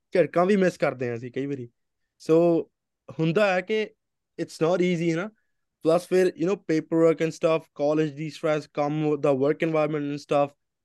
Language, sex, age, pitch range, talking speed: English, male, 20-39, 135-170 Hz, 115 wpm